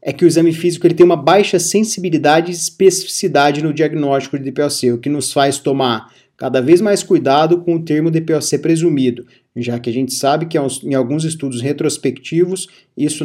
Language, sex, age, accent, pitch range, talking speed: Portuguese, male, 30-49, Brazilian, 135-175 Hz, 180 wpm